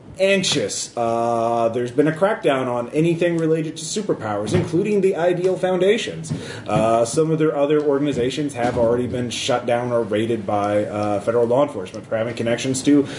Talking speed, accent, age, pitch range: 170 wpm, American, 30-49, 120-160 Hz